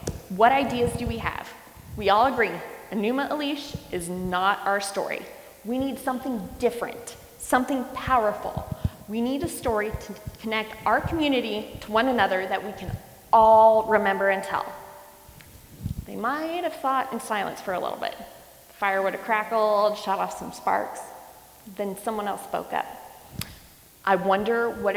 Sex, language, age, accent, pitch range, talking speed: female, English, 20-39, American, 195-260 Hz, 155 wpm